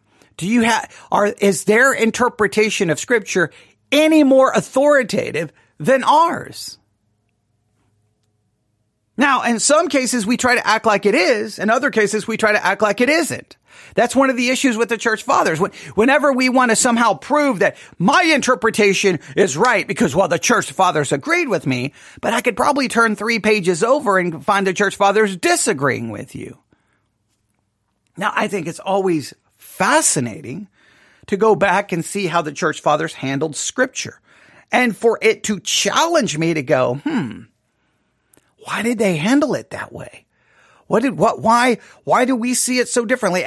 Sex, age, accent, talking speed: male, 40-59, American, 170 wpm